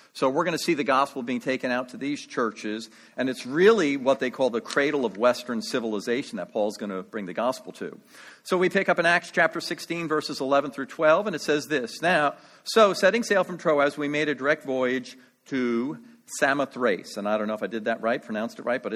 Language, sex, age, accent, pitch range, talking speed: English, male, 50-69, American, 125-180 Hz, 235 wpm